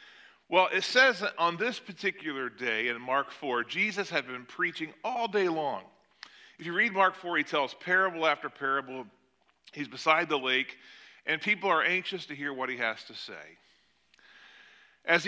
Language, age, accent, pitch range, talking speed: English, 40-59, American, 165-250 Hz, 175 wpm